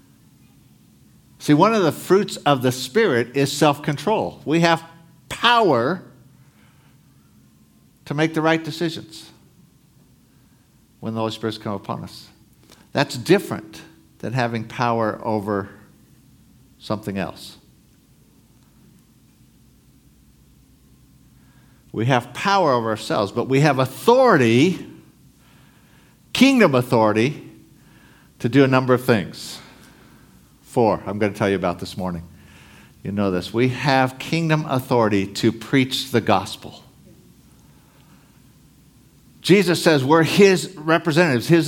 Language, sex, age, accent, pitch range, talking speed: English, male, 60-79, American, 105-175 Hz, 110 wpm